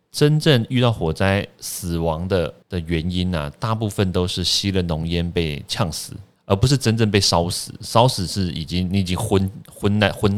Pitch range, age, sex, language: 80-110 Hz, 30-49, male, Chinese